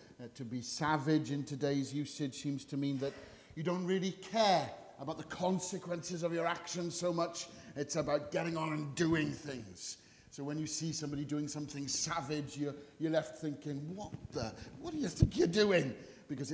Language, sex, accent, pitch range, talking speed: English, male, British, 150-205 Hz, 185 wpm